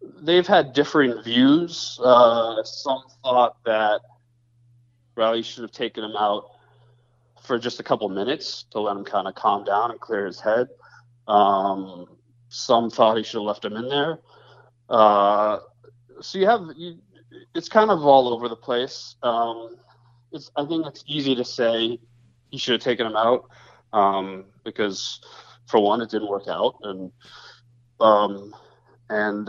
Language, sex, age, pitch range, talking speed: English, male, 20-39, 110-130 Hz, 150 wpm